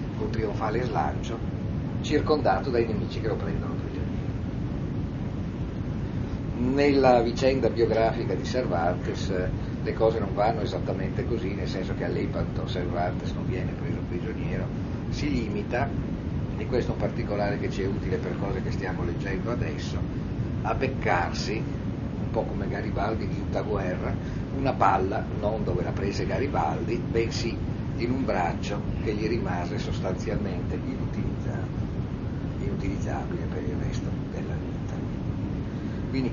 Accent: native